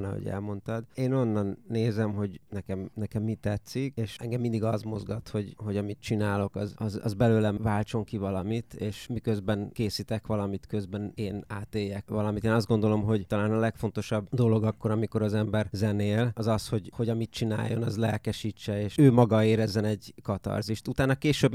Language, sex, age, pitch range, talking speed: English, male, 30-49, 105-115 Hz, 175 wpm